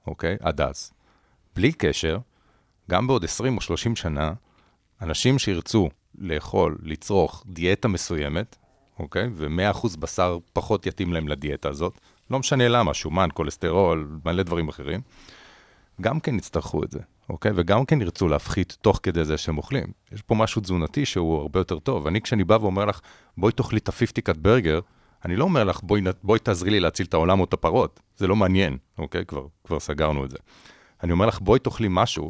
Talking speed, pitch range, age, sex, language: 180 wpm, 85-115 Hz, 40-59, male, Hebrew